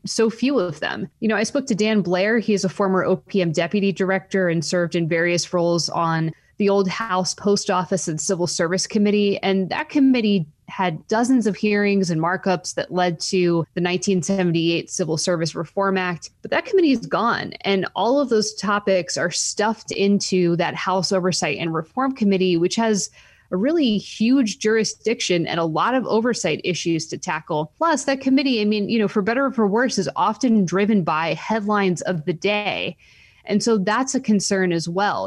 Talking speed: 190 wpm